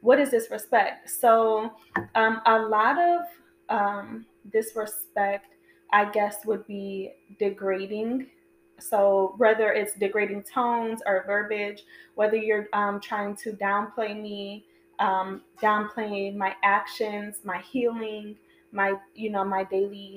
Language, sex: English, female